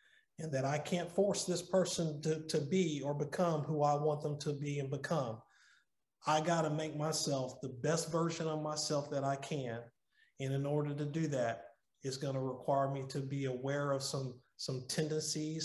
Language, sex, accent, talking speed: English, male, American, 195 wpm